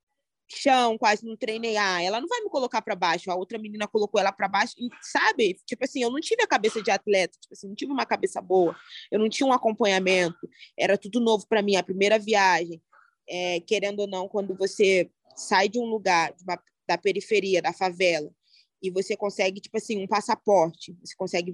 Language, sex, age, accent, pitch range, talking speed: English, female, 20-39, Brazilian, 185-225 Hz, 205 wpm